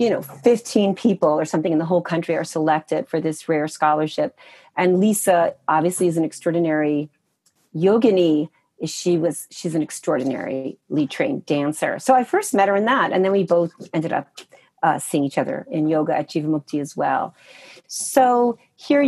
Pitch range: 170-210 Hz